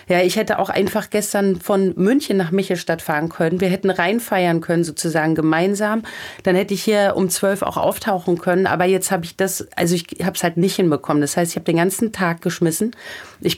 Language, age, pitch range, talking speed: German, 40-59, 160-190 Hz, 210 wpm